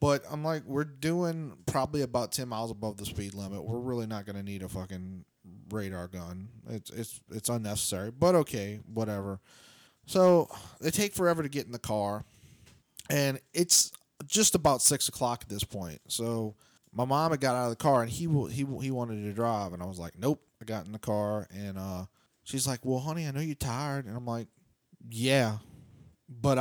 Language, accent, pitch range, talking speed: English, American, 105-145 Hz, 200 wpm